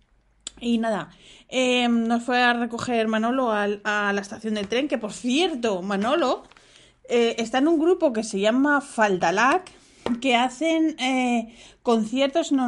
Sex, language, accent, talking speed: female, Spanish, Spanish, 145 wpm